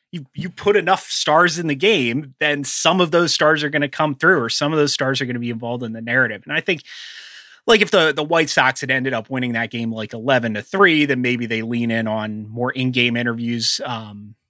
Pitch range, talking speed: 115-145 Hz, 250 wpm